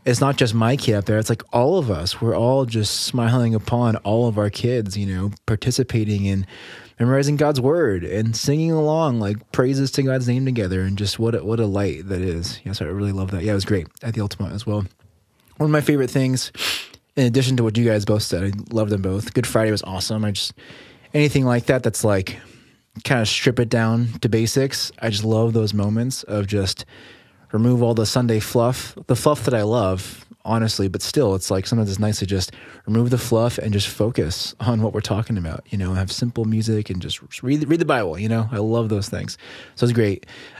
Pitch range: 105-125 Hz